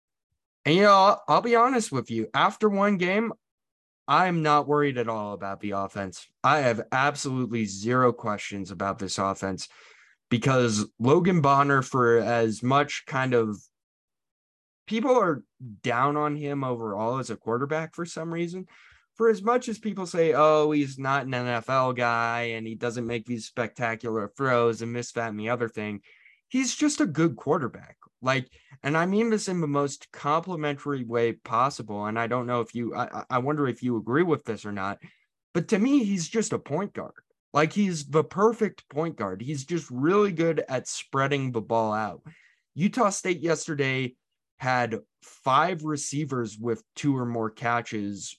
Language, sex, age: English, male, 20-39